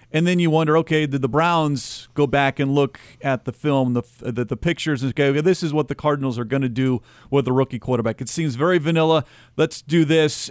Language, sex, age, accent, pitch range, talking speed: English, male, 40-59, American, 130-160 Hz, 240 wpm